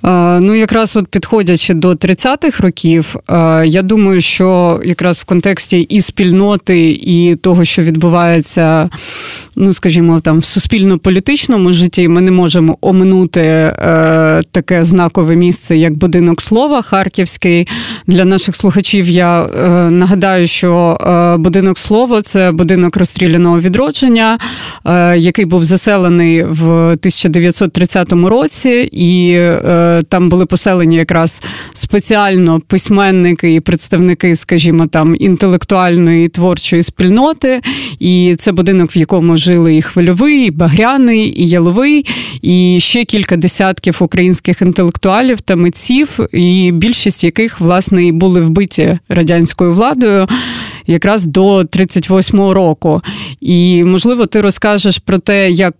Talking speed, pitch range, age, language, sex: 115 wpm, 170-195 Hz, 30-49, Ukrainian, female